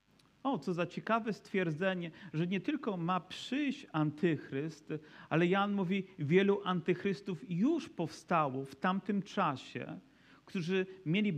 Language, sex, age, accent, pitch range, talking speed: Polish, male, 40-59, native, 160-200 Hz, 120 wpm